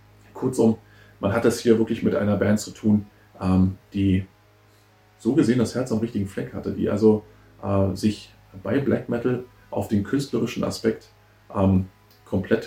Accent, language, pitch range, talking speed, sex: German, German, 100-115 Hz, 145 wpm, male